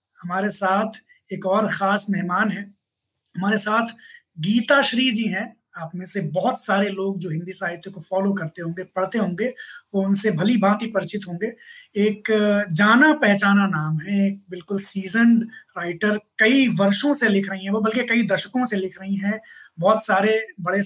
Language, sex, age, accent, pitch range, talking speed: Hindi, male, 20-39, native, 190-225 Hz, 175 wpm